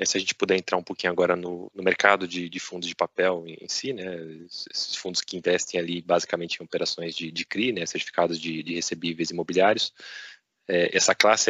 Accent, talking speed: Brazilian, 210 wpm